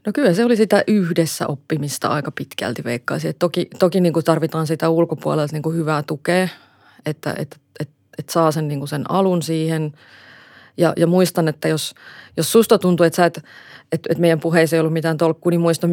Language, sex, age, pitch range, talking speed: Finnish, female, 30-49, 155-175 Hz, 190 wpm